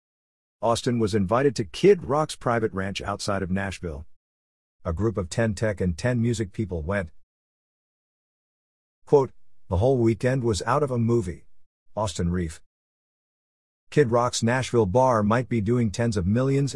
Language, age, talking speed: English, 50-69, 150 wpm